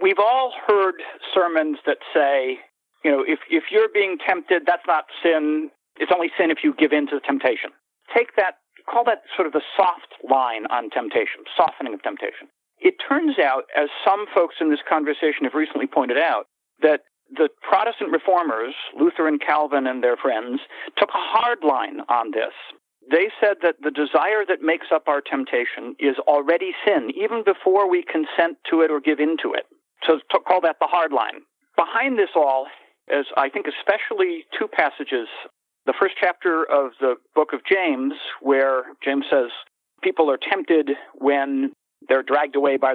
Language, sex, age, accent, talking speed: English, male, 50-69, American, 175 wpm